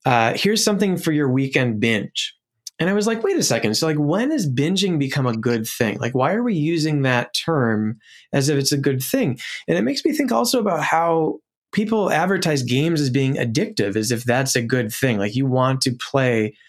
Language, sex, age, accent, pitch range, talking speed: English, male, 20-39, American, 120-160 Hz, 220 wpm